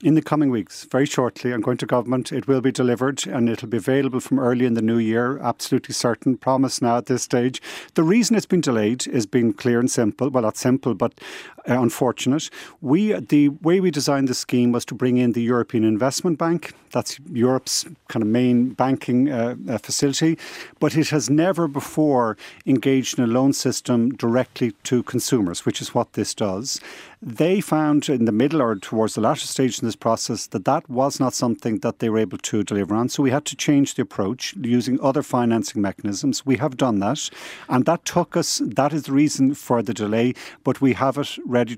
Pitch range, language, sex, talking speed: 120-145 Hz, English, male, 205 wpm